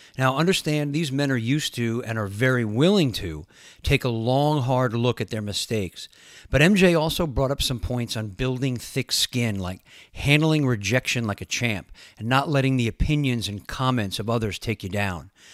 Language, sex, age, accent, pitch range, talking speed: English, male, 40-59, American, 110-135 Hz, 190 wpm